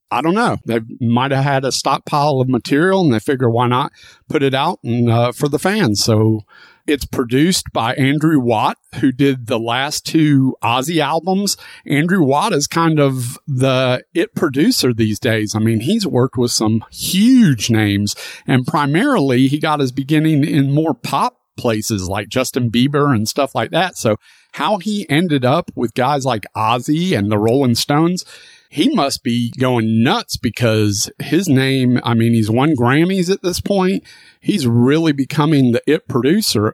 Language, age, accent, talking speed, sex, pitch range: English, 40-59, American, 175 wpm, male, 115-145 Hz